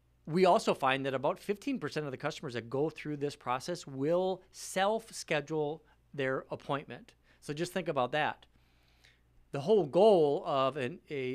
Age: 40-59